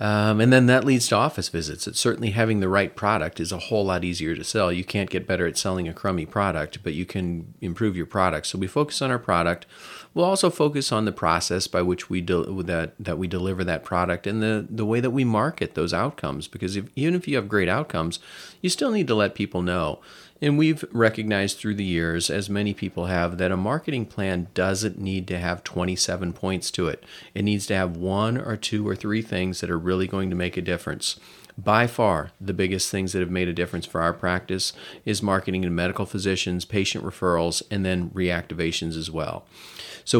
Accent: American